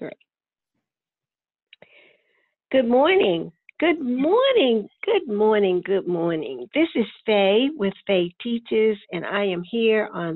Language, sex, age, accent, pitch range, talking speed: English, female, 60-79, American, 200-265 Hz, 110 wpm